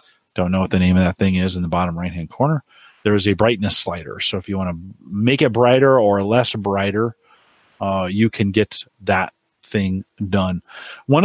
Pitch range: 105-130 Hz